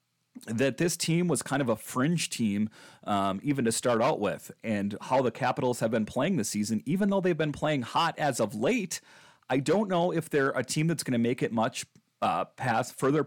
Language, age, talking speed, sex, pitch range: English, 40-59, 220 wpm, male, 110-155 Hz